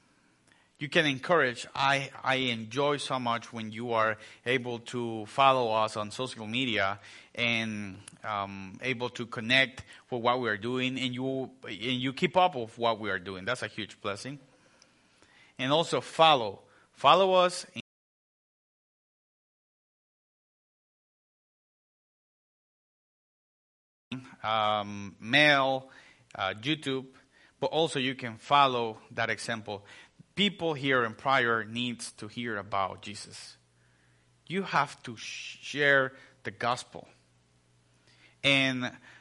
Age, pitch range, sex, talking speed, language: 30-49, 105-140 Hz, male, 115 wpm, English